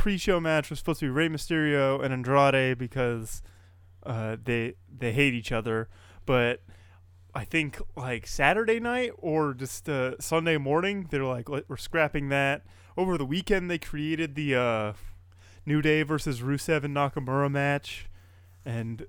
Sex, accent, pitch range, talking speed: male, American, 110-145 Hz, 150 wpm